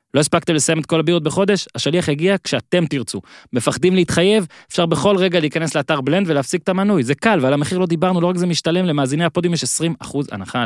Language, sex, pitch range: Hebrew, male, 120-165 Hz